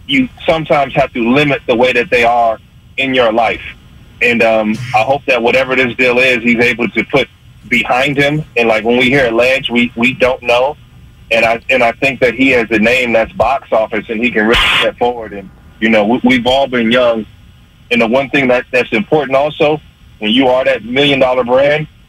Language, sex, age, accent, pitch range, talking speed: English, male, 30-49, American, 115-135 Hz, 220 wpm